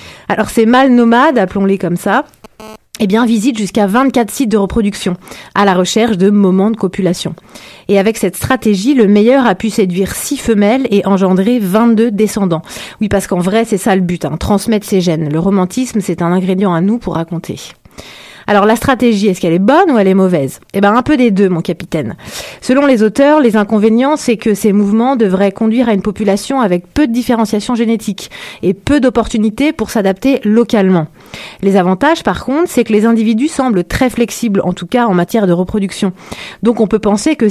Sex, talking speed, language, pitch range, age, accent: female, 200 wpm, French, 190-235 Hz, 30-49, French